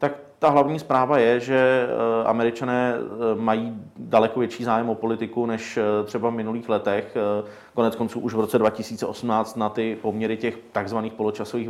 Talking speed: 150 wpm